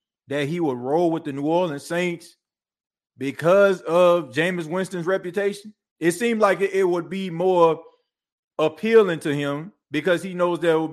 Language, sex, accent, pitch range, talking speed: English, male, American, 145-190 Hz, 160 wpm